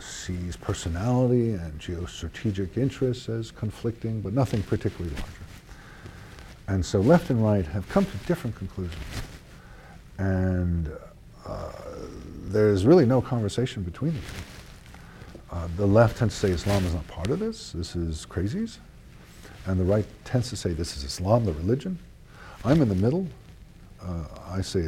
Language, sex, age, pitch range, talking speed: English, male, 50-69, 85-115 Hz, 150 wpm